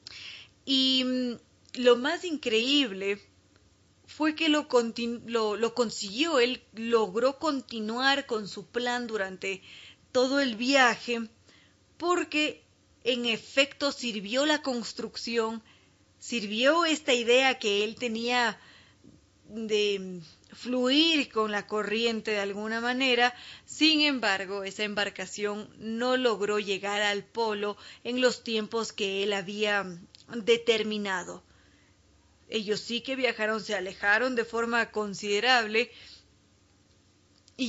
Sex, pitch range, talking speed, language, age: female, 200-245 Hz, 105 wpm, Spanish, 30-49